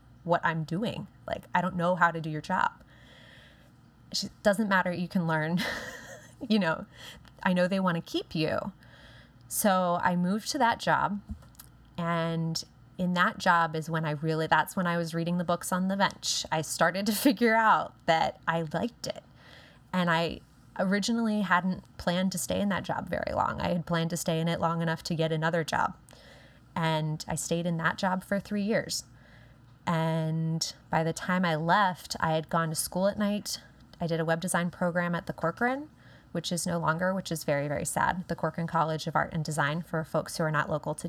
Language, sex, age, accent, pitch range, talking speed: English, female, 20-39, American, 160-185 Hz, 205 wpm